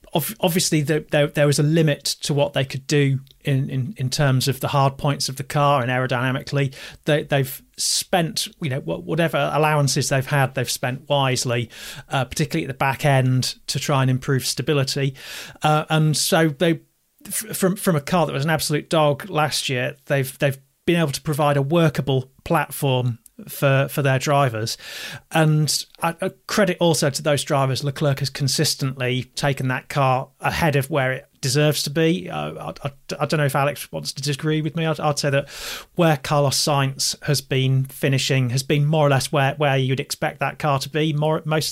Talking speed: 190 wpm